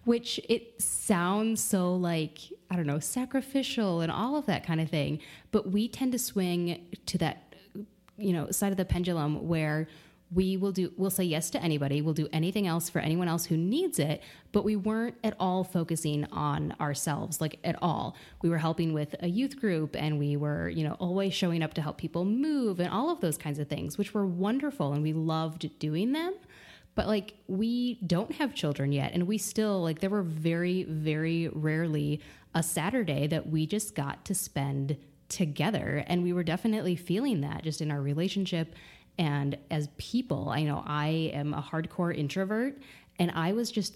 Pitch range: 155-205 Hz